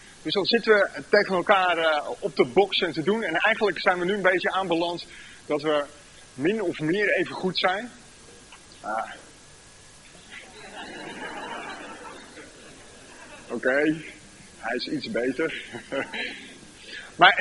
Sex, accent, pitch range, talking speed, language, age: male, Dutch, 165-230 Hz, 125 wpm, Dutch, 30-49